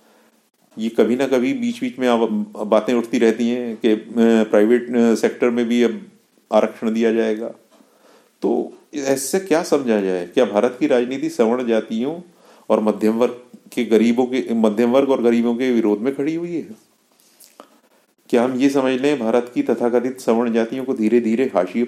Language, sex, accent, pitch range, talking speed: Hindi, male, native, 110-145 Hz, 165 wpm